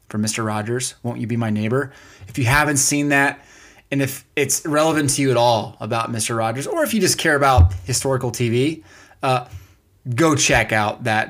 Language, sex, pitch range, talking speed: English, male, 110-140 Hz, 190 wpm